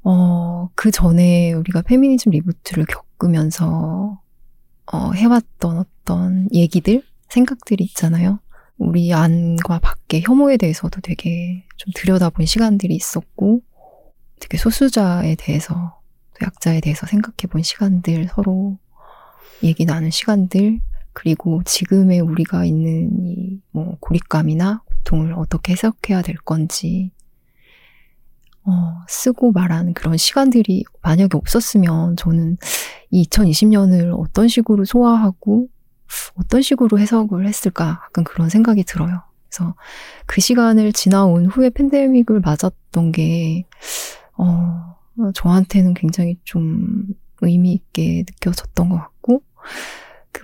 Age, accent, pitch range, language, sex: 20-39, native, 170-210 Hz, Korean, female